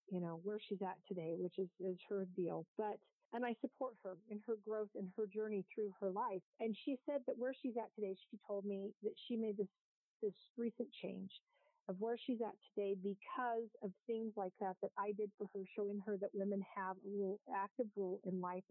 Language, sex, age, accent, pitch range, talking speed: English, female, 40-59, American, 190-225 Hz, 220 wpm